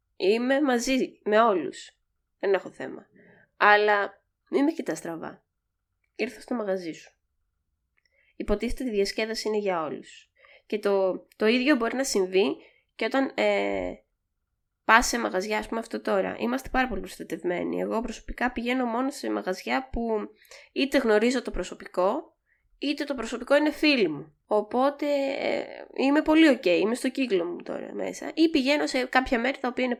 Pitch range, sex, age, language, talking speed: 190-275 Hz, female, 20-39, Greek, 160 wpm